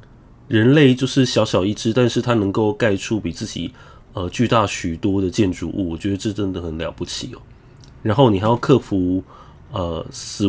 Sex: male